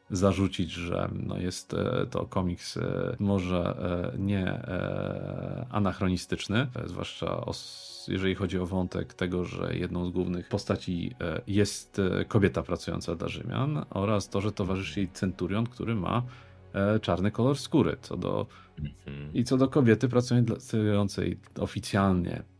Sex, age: male, 40-59